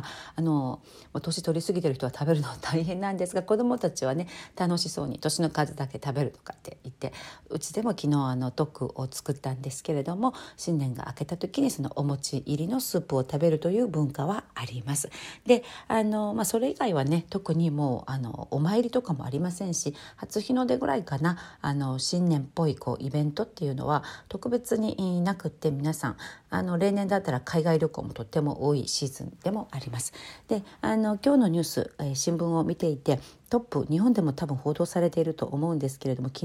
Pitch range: 140-185 Hz